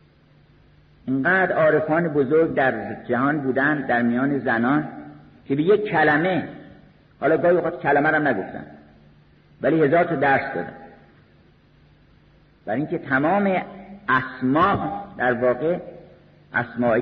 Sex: male